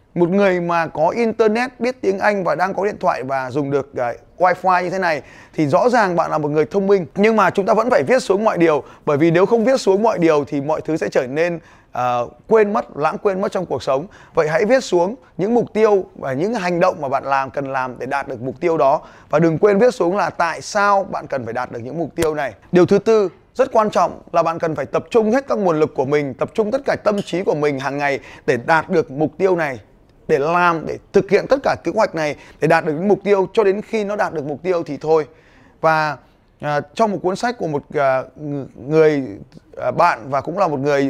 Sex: male